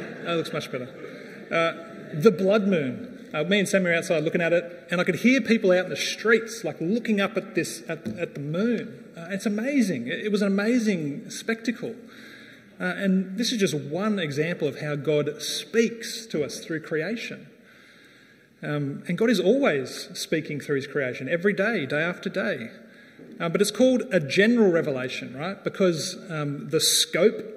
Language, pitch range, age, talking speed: English, 170-225 Hz, 30-49, 185 wpm